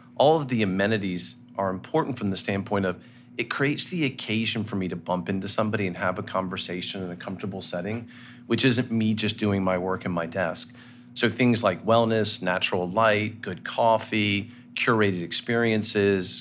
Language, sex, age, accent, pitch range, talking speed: English, male, 40-59, American, 100-120 Hz, 175 wpm